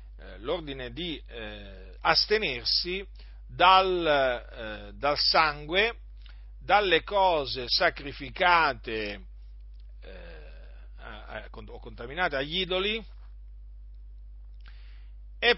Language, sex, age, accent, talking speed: Italian, male, 40-59, native, 75 wpm